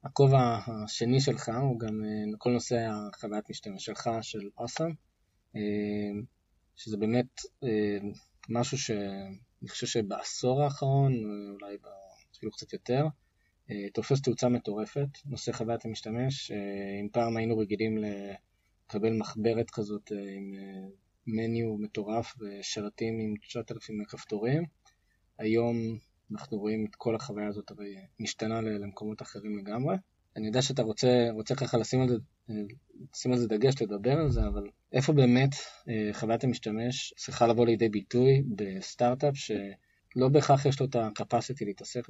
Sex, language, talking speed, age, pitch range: male, Hebrew, 125 wpm, 20-39, 105-125 Hz